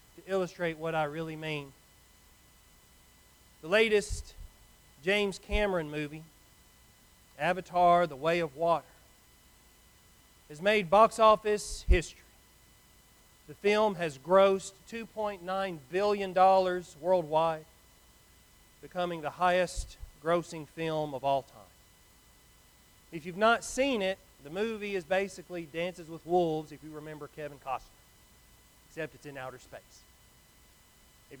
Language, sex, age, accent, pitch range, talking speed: English, male, 40-59, American, 145-190 Hz, 115 wpm